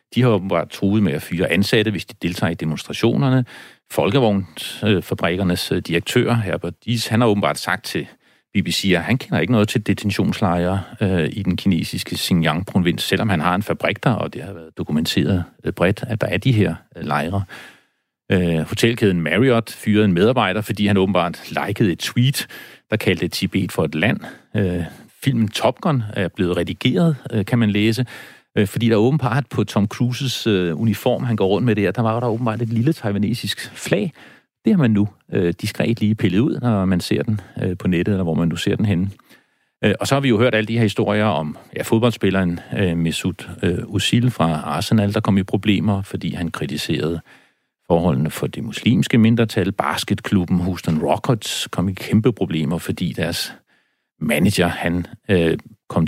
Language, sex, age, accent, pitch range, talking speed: Danish, male, 40-59, native, 90-115 Hz, 180 wpm